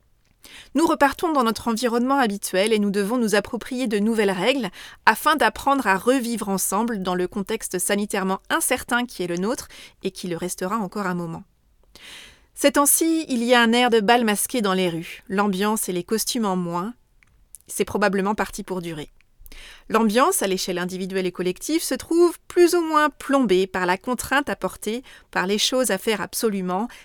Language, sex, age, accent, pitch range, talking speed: French, female, 30-49, French, 195-255 Hz, 180 wpm